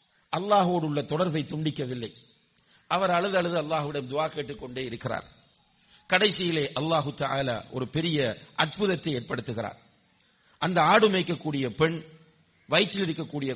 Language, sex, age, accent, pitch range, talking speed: English, male, 50-69, Indian, 135-190 Hz, 120 wpm